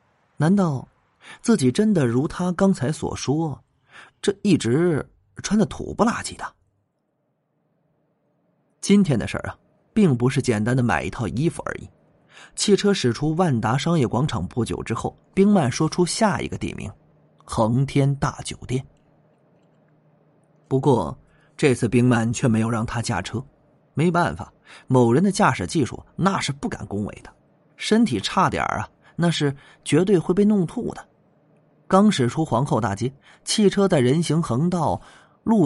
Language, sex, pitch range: Chinese, male, 120-170 Hz